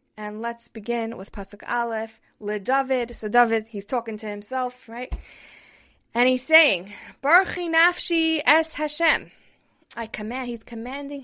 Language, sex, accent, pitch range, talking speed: English, female, American, 210-260 Hz, 135 wpm